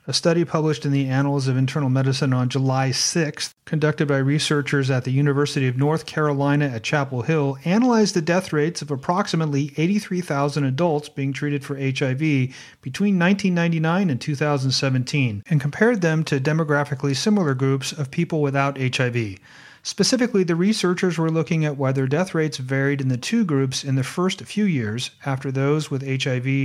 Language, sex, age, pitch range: English, male, 40-59, 135-160 Hz